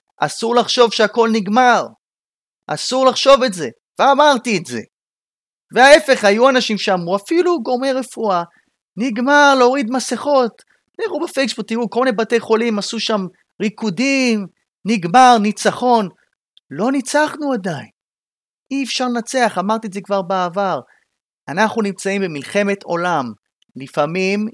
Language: Hebrew